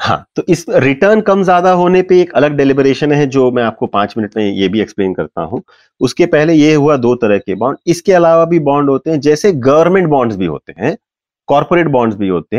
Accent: native